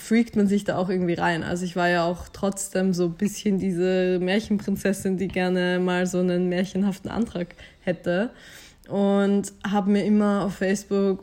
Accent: German